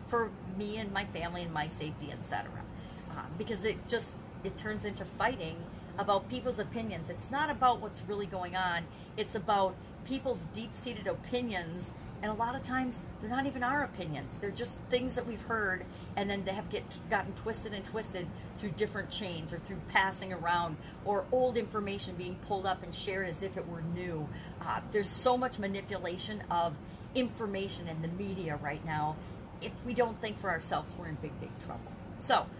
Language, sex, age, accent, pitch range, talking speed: English, female, 40-59, American, 180-230 Hz, 190 wpm